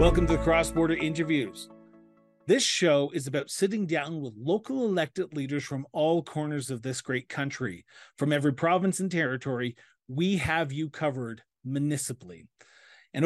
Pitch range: 130-175 Hz